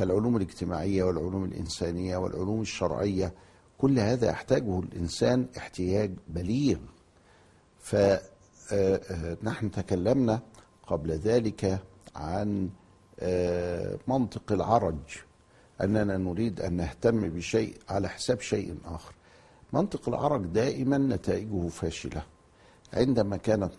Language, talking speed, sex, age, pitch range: Arabic, 90 wpm, male, 60-79, 85-110 Hz